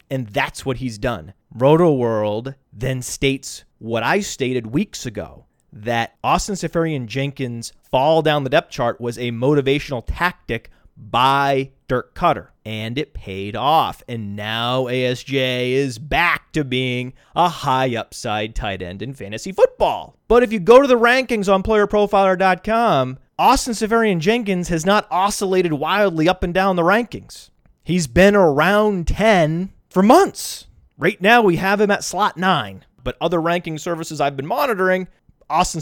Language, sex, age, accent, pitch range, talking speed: English, male, 30-49, American, 130-190 Hz, 150 wpm